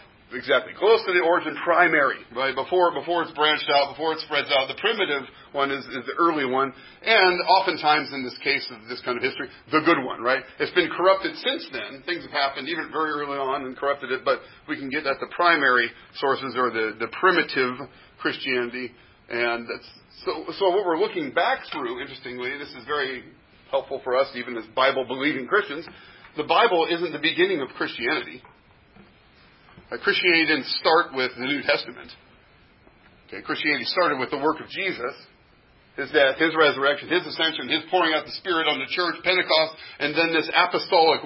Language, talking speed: English, 185 wpm